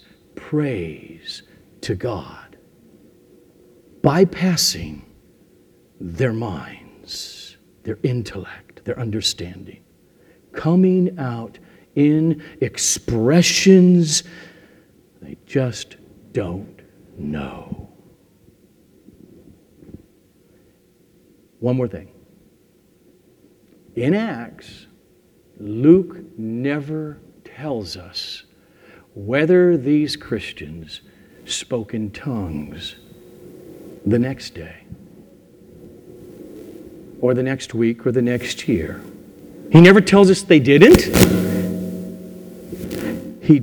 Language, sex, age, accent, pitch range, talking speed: English, male, 60-79, American, 115-170 Hz, 70 wpm